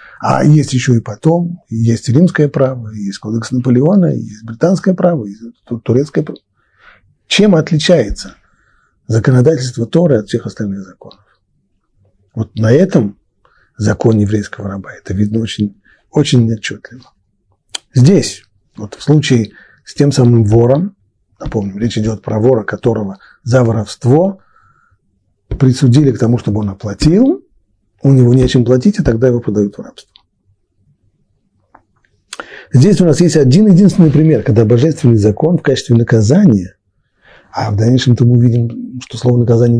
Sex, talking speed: male, 135 wpm